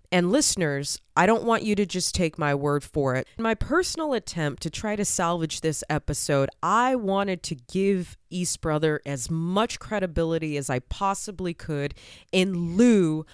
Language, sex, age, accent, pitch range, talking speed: English, female, 20-39, American, 150-195 Hz, 170 wpm